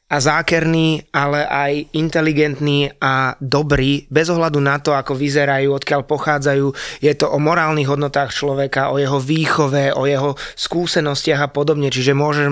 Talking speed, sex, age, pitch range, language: 150 wpm, male, 20-39, 140-155 Hz, Slovak